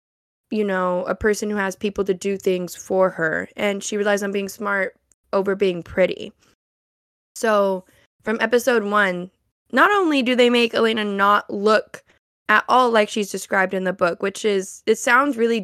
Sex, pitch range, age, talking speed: female, 190-230 Hz, 10-29, 175 wpm